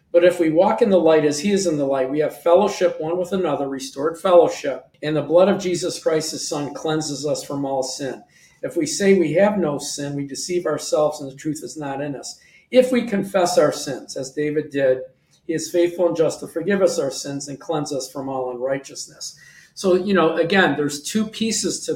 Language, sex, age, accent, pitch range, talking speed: English, male, 50-69, American, 145-180 Hz, 225 wpm